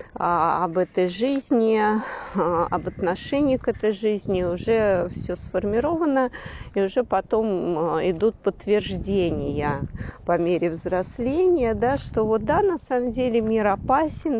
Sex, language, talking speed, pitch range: female, Russian, 115 wpm, 175-230 Hz